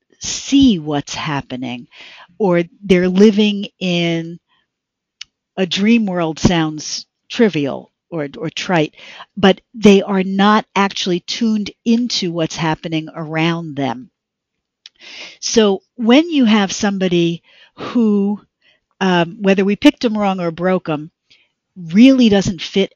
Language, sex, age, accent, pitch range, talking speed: English, female, 50-69, American, 170-220 Hz, 115 wpm